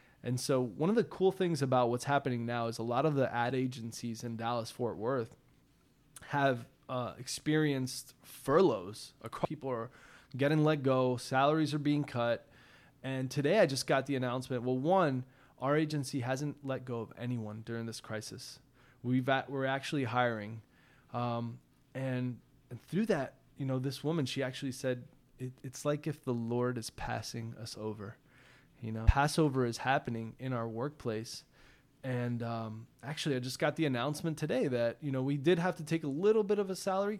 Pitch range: 120-145 Hz